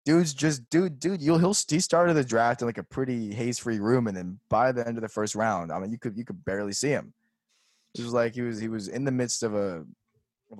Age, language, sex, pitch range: 20-39, English, male, 105-130 Hz